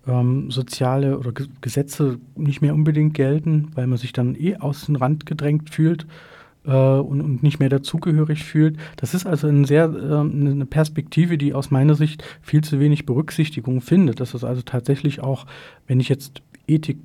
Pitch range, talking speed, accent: 130-155 Hz, 185 wpm, German